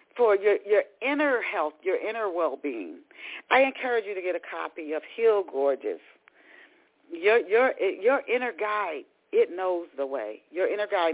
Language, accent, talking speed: English, American, 160 wpm